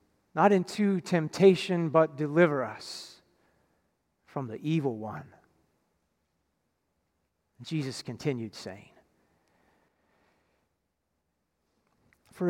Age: 40-59